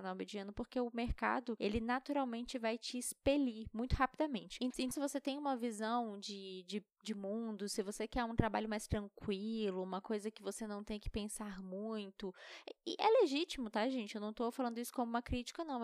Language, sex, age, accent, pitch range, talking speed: Portuguese, female, 10-29, Brazilian, 210-260 Hz, 185 wpm